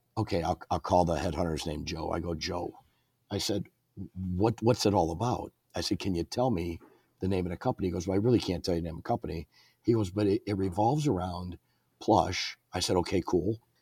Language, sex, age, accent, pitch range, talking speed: English, male, 50-69, American, 90-115 Hz, 230 wpm